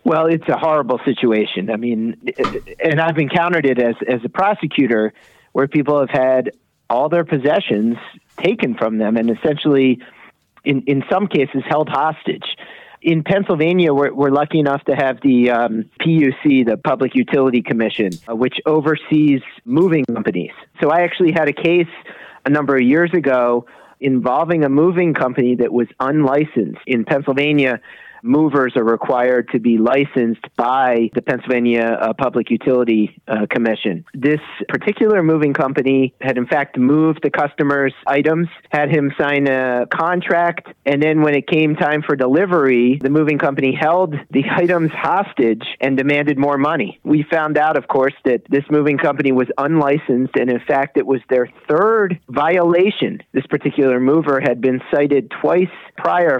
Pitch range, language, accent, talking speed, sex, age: 125-155 Hz, English, American, 155 wpm, male, 40-59